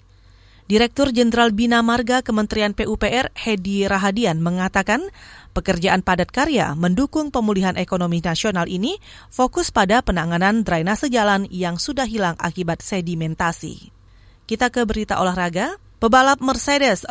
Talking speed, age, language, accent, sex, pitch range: 115 wpm, 30-49, Indonesian, native, female, 190-255 Hz